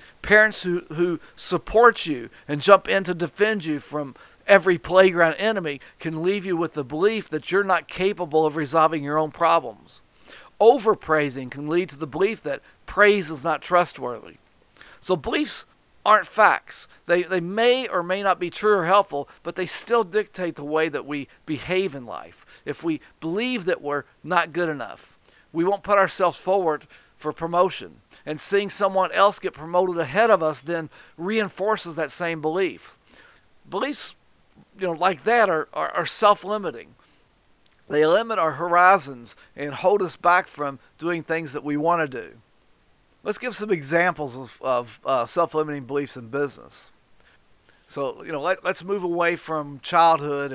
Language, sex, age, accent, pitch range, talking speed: English, male, 50-69, American, 150-195 Hz, 165 wpm